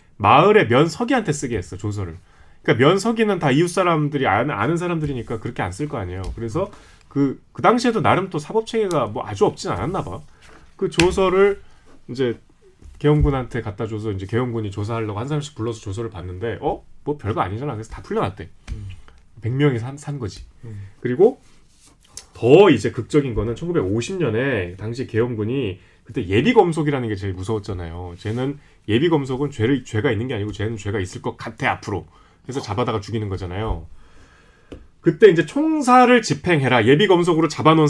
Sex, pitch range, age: male, 110-170 Hz, 30-49